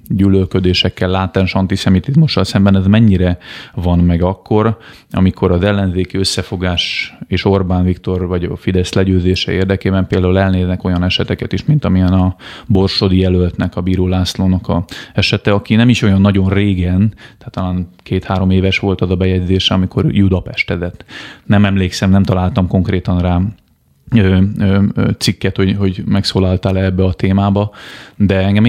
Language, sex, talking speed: Hungarian, male, 140 wpm